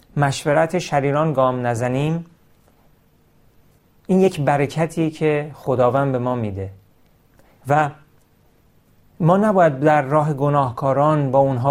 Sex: male